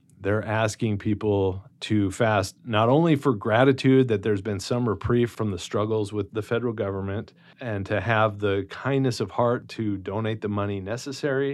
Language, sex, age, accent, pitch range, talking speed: English, male, 40-59, American, 100-120 Hz, 170 wpm